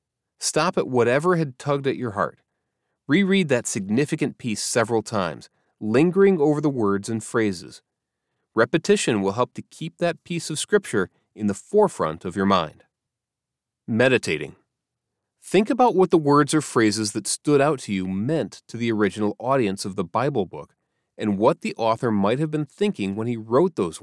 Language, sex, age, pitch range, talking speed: English, male, 30-49, 110-165 Hz, 170 wpm